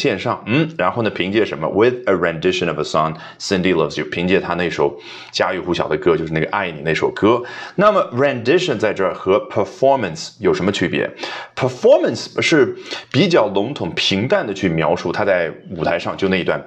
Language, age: Chinese, 30-49